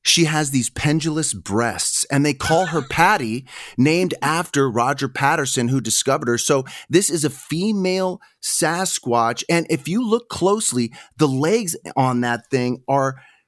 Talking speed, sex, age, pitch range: 150 wpm, male, 30-49, 120-170 Hz